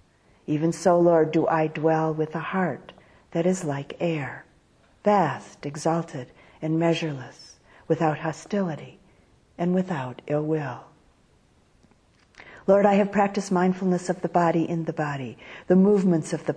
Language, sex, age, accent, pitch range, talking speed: English, female, 50-69, American, 145-180 Hz, 140 wpm